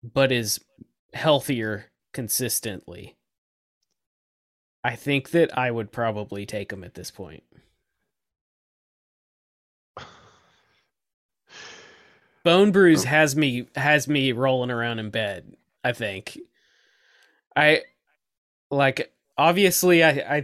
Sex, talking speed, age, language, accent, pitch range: male, 90 wpm, 20-39, English, American, 115-150 Hz